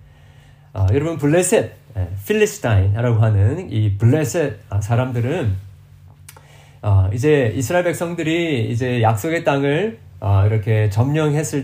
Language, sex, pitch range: Korean, male, 105-150 Hz